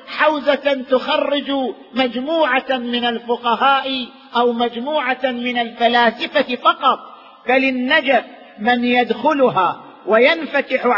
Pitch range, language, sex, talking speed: 240-275 Hz, Arabic, male, 75 wpm